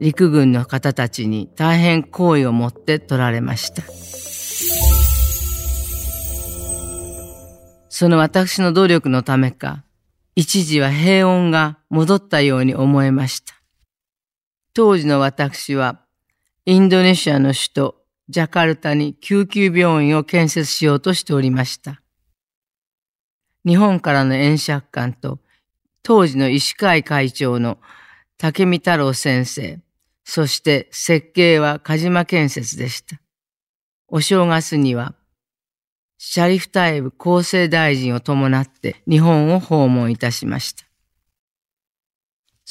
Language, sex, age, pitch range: Japanese, female, 40-59, 130-170 Hz